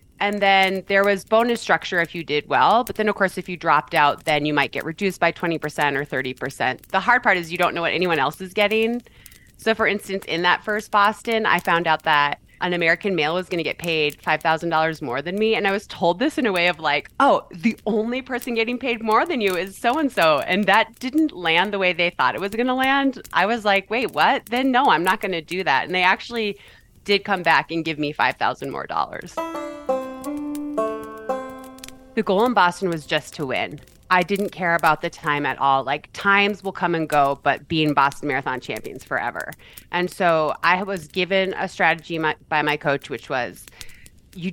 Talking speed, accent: 215 wpm, American